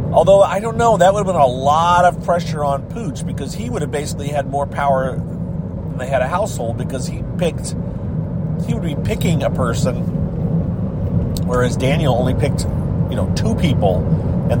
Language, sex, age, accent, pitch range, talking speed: English, male, 40-59, American, 115-140 Hz, 185 wpm